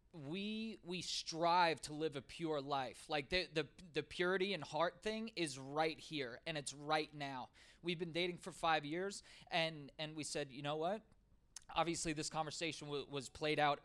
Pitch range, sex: 140-170 Hz, male